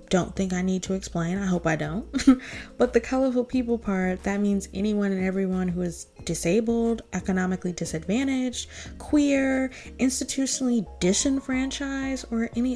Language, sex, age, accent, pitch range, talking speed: English, female, 20-39, American, 190-250 Hz, 140 wpm